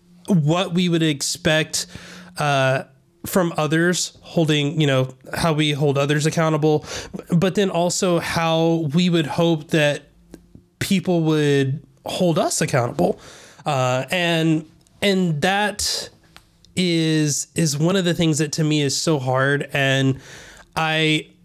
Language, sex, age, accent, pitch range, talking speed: English, male, 20-39, American, 140-170 Hz, 130 wpm